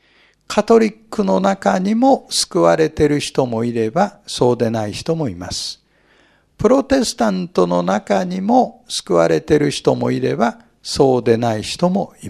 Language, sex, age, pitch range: Japanese, male, 60-79, 145-215 Hz